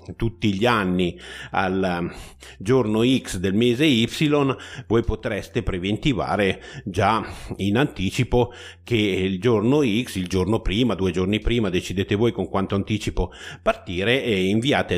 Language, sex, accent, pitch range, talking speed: Italian, male, native, 95-115 Hz, 130 wpm